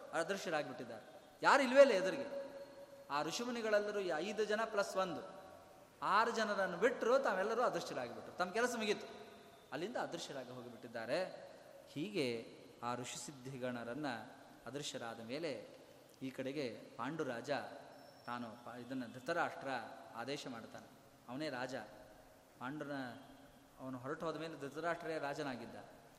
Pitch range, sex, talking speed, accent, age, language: 130-195 Hz, male, 105 wpm, native, 20-39, Kannada